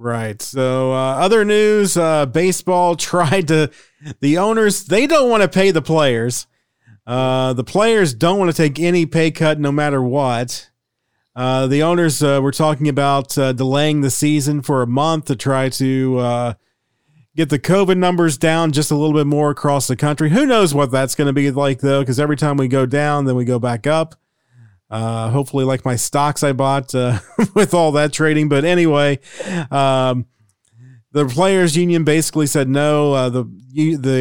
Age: 40-59